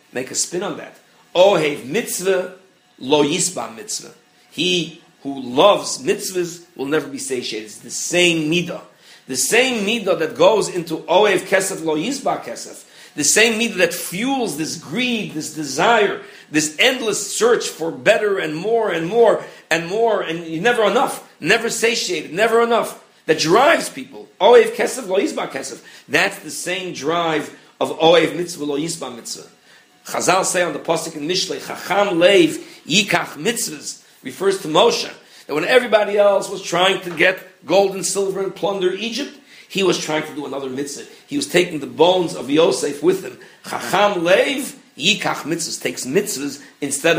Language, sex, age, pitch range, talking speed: English, male, 50-69, 165-230 Hz, 165 wpm